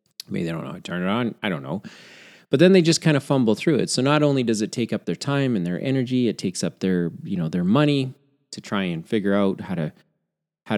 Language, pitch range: English, 100-145 Hz